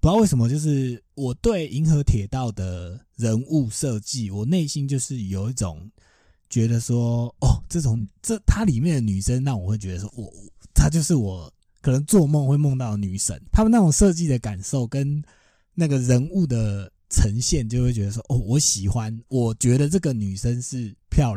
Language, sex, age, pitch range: Chinese, male, 20-39, 105-135 Hz